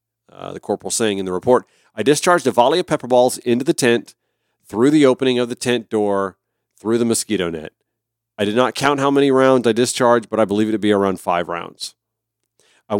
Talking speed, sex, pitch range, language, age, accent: 215 wpm, male, 105-125 Hz, English, 40-59, American